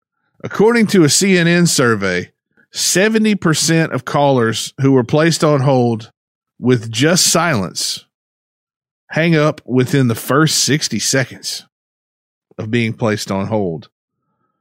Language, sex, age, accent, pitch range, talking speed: English, male, 40-59, American, 115-160 Hz, 115 wpm